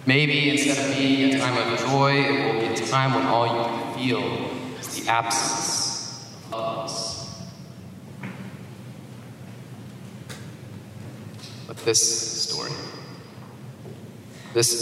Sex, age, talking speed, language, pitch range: male, 20-39, 110 wpm, English, 115-140 Hz